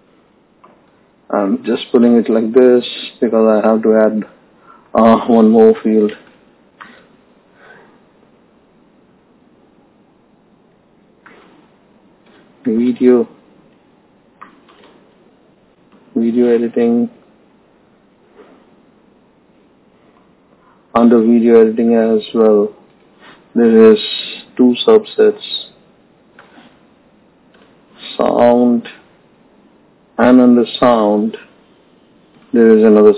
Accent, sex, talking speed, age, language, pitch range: native, male, 65 wpm, 50-69, Hindi, 110-120 Hz